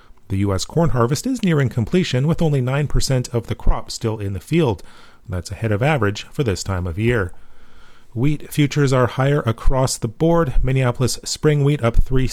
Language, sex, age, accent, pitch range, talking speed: English, male, 30-49, American, 115-150 Hz, 190 wpm